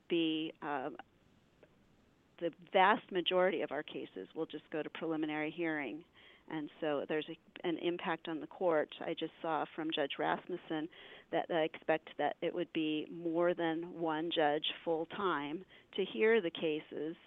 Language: English